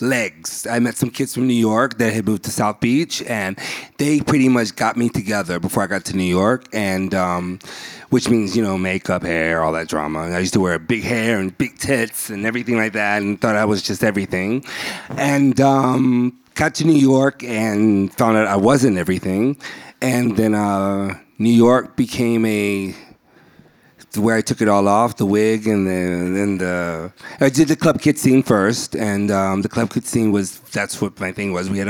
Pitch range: 100-120 Hz